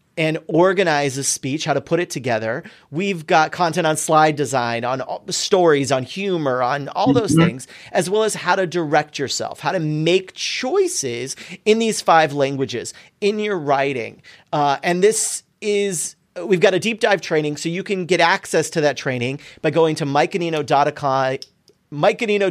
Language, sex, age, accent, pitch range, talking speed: English, male, 40-59, American, 145-190 Hz, 165 wpm